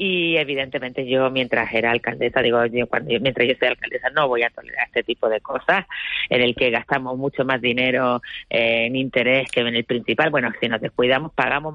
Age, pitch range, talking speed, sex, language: 30-49, 140-195 Hz, 210 wpm, female, Spanish